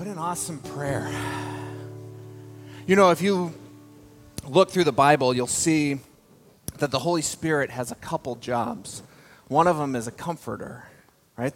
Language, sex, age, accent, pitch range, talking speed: English, male, 30-49, American, 130-195 Hz, 150 wpm